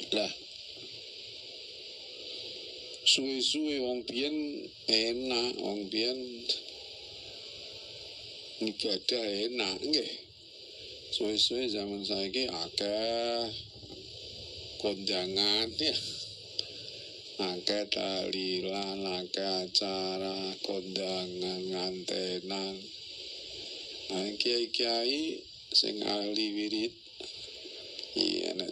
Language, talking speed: Indonesian, 60 wpm